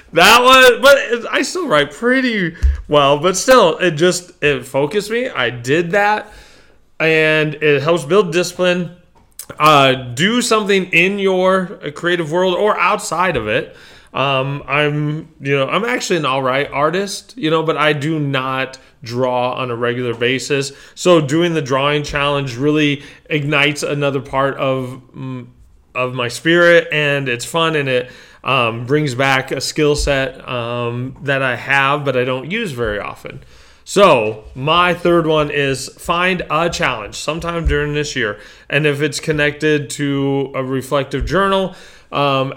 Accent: American